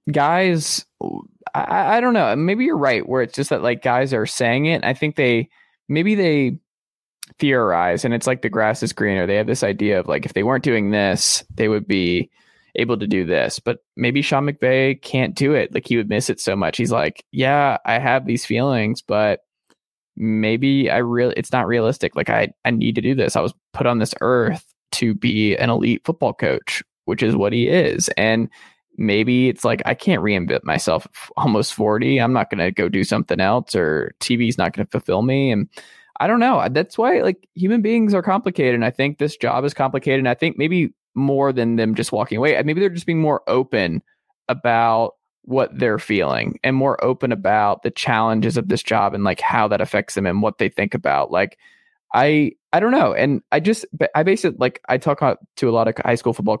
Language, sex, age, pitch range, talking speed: English, male, 20-39, 115-150 Hz, 215 wpm